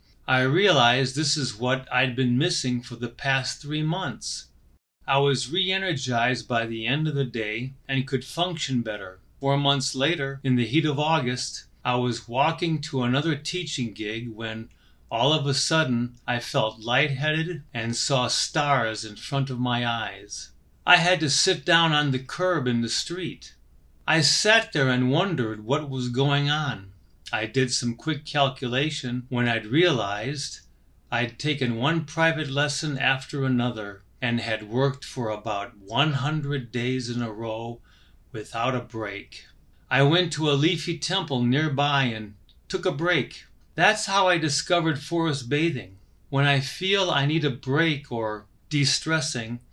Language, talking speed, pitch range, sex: English, 160 wpm, 120-155 Hz, male